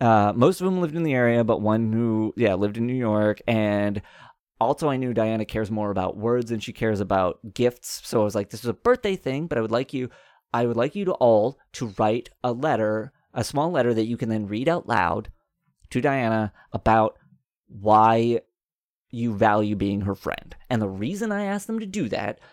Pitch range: 110-135 Hz